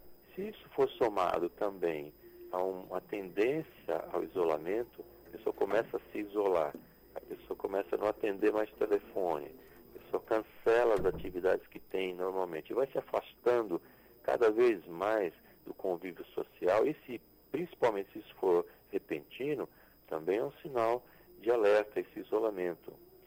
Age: 60-79